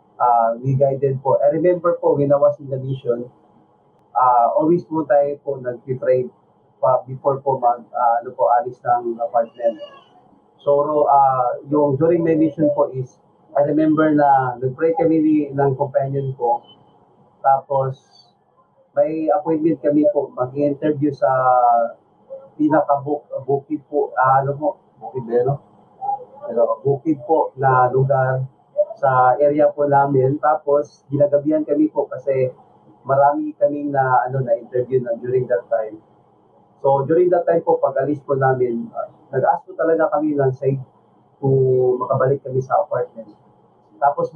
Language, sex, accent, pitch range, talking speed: Filipino, male, native, 130-150 Hz, 145 wpm